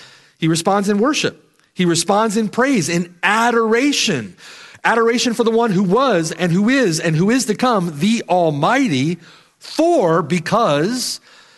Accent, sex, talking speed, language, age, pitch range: American, male, 145 wpm, English, 40-59, 160-220 Hz